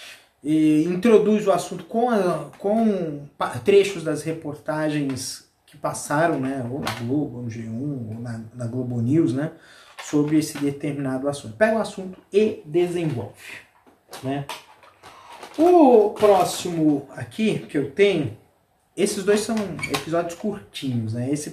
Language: Portuguese